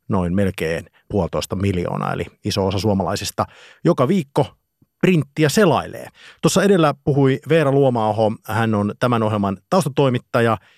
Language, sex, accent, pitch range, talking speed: Finnish, male, native, 100-125 Hz, 120 wpm